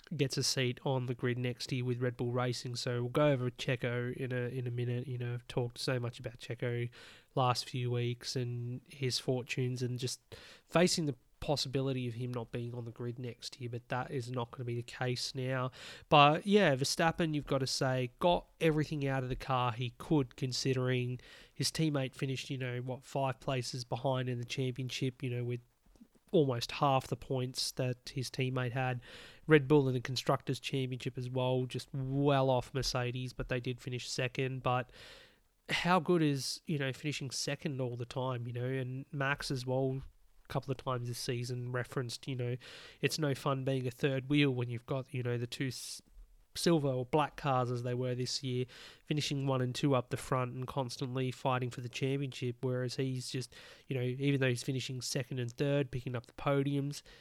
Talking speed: 205 wpm